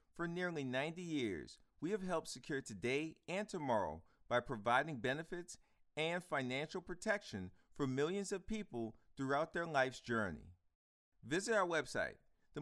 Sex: male